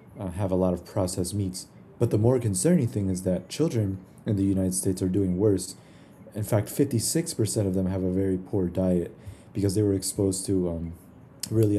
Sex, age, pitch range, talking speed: male, 30-49, 95-120 Hz, 205 wpm